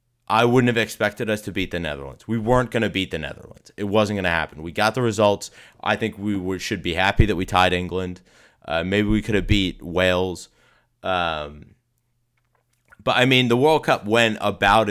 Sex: male